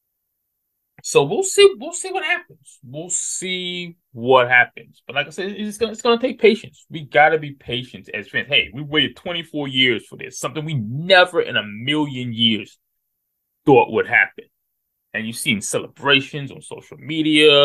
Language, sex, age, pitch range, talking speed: English, male, 20-39, 120-195 Hz, 180 wpm